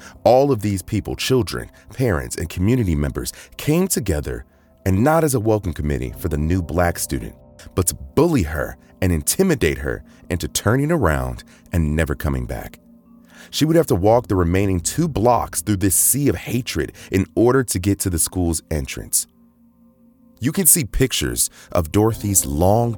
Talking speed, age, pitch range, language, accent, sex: 170 wpm, 30-49, 75-110 Hz, English, American, male